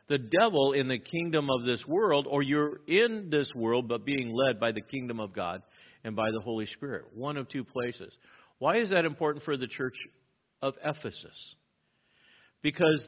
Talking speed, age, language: 185 wpm, 50-69, English